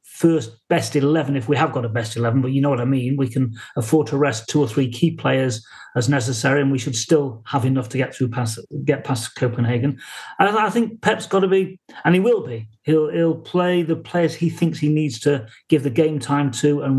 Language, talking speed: English, 240 wpm